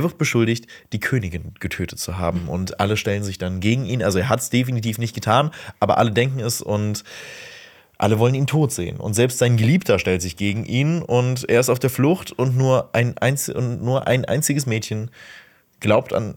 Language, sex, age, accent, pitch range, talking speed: German, male, 20-39, German, 100-125 Hz, 210 wpm